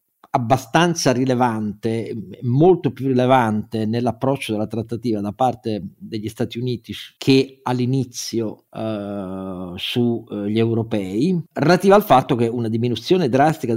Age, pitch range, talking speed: 50-69, 115-135 Hz, 105 wpm